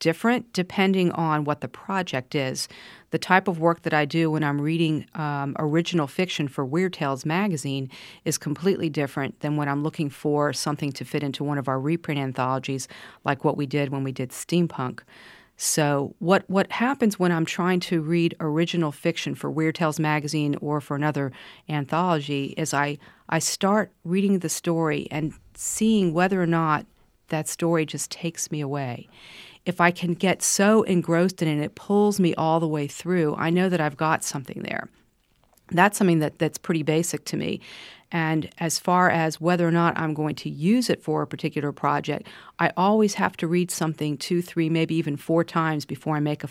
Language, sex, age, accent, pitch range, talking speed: English, female, 40-59, American, 145-175 Hz, 190 wpm